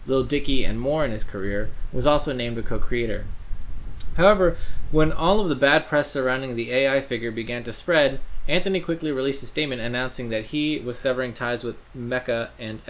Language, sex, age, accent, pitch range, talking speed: English, male, 20-39, American, 115-145 Hz, 185 wpm